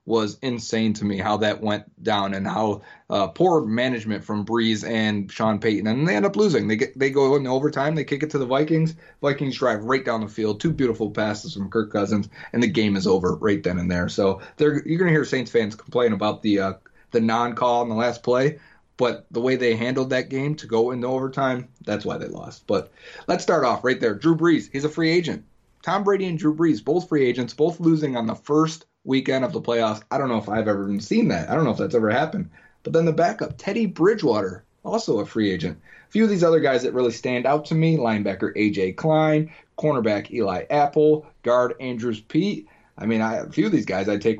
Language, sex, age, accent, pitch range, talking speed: English, male, 30-49, American, 110-155 Hz, 235 wpm